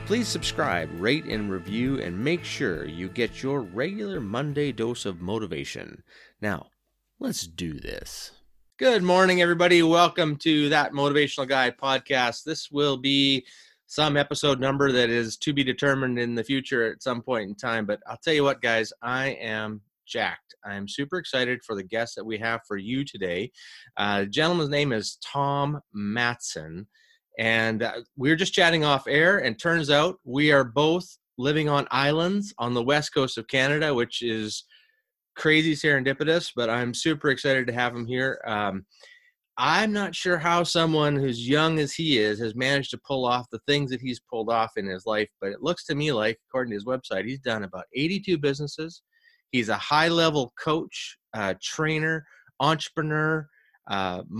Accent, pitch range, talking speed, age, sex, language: American, 115-155 Hz, 180 wpm, 30-49, male, English